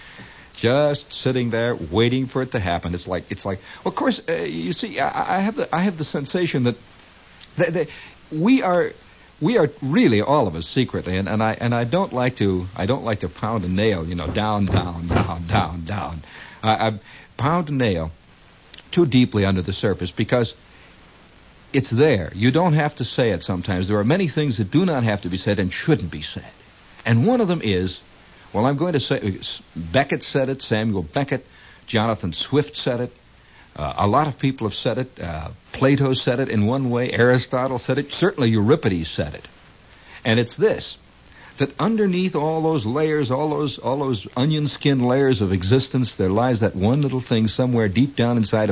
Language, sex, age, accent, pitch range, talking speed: English, male, 60-79, American, 95-135 Hz, 195 wpm